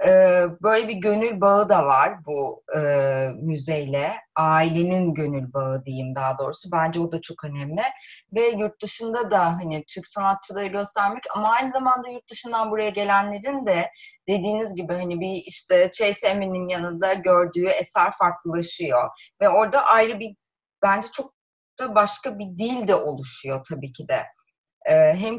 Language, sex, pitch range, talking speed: Turkish, female, 170-240 Hz, 145 wpm